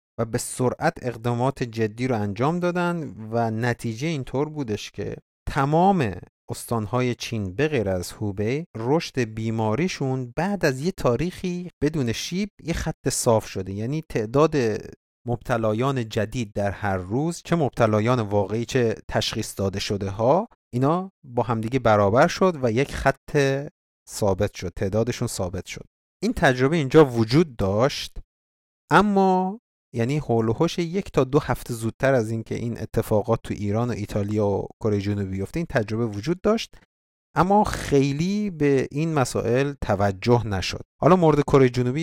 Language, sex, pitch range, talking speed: Persian, male, 105-145 Hz, 145 wpm